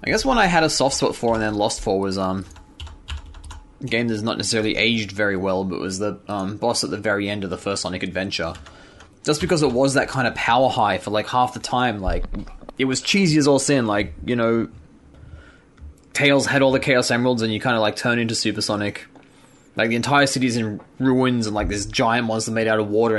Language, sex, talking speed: English, male, 235 wpm